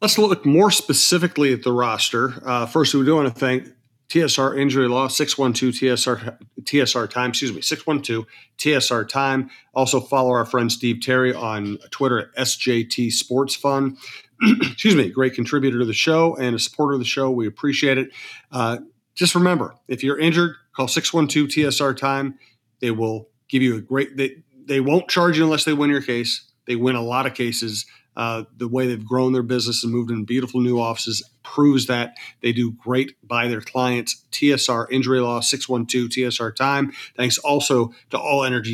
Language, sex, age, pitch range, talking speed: English, male, 40-59, 120-140 Hz, 190 wpm